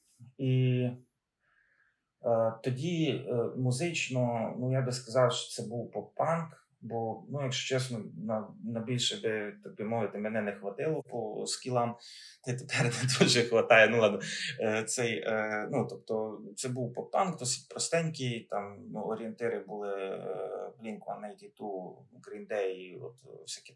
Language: Ukrainian